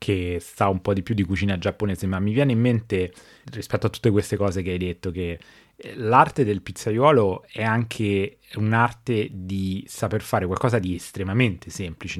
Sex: male